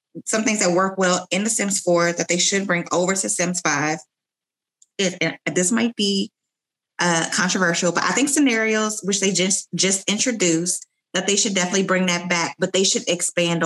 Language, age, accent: English, 20-39, American